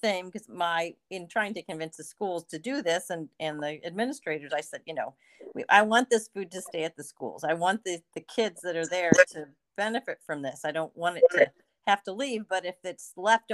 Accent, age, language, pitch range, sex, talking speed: American, 40-59, English, 150-185 Hz, female, 240 wpm